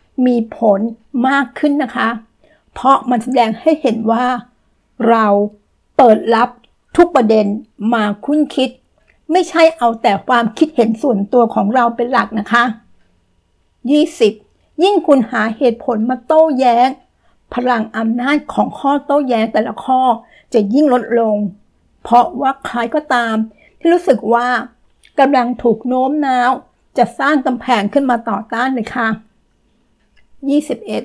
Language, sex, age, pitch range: Thai, female, 60-79, 220-270 Hz